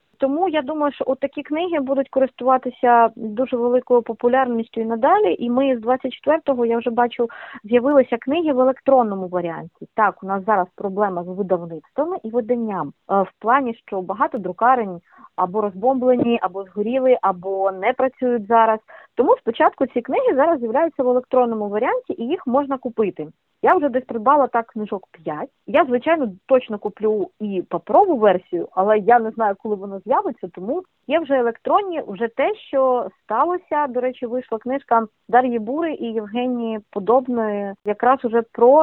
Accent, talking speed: native, 160 wpm